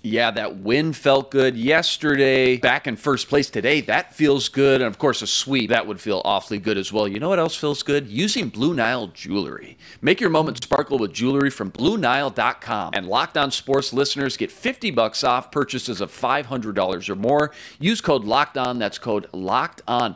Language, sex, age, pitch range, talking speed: English, male, 40-59, 115-145 Hz, 195 wpm